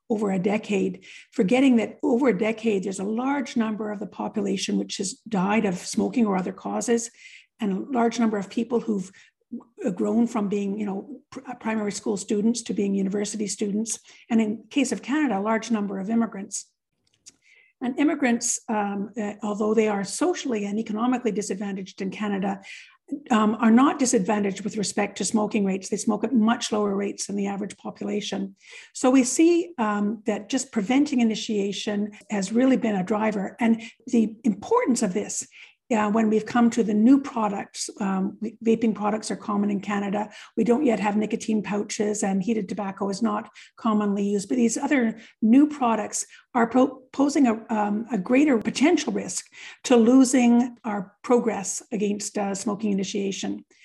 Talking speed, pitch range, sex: 165 wpm, 205-240 Hz, female